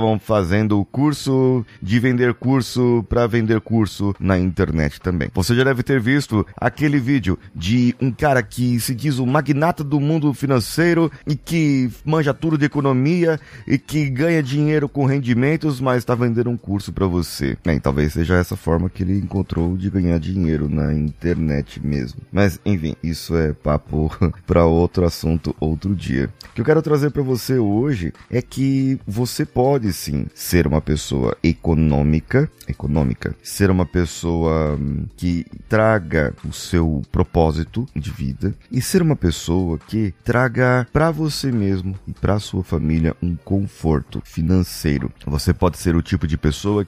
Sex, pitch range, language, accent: male, 85-125 Hz, Portuguese, Brazilian